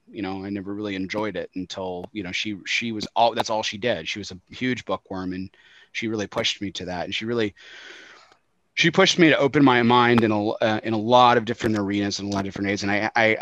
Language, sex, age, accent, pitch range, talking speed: English, male, 30-49, American, 100-120 Hz, 260 wpm